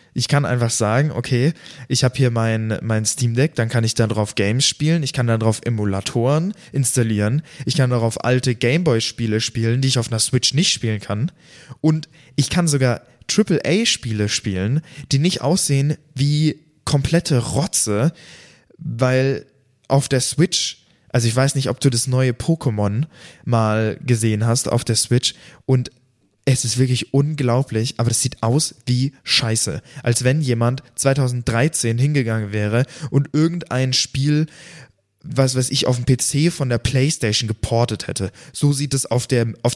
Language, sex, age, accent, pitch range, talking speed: German, male, 20-39, German, 115-140 Hz, 160 wpm